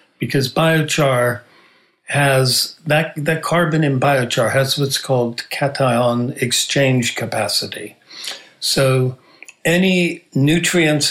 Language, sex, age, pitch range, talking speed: English, male, 60-79, 125-150 Hz, 90 wpm